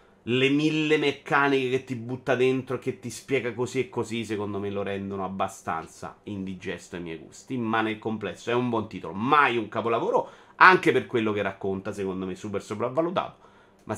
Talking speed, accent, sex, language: 185 wpm, native, male, Italian